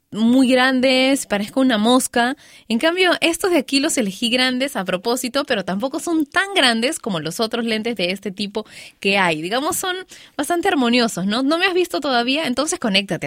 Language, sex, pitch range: Spanish, female, 205-285 Hz